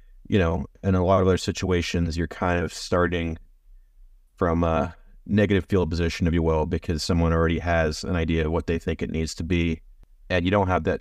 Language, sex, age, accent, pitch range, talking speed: English, male, 30-49, American, 85-100 Hz, 215 wpm